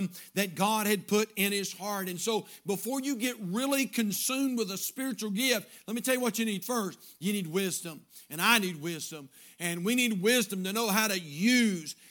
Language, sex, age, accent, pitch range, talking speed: English, male, 50-69, American, 195-230 Hz, 210 wpm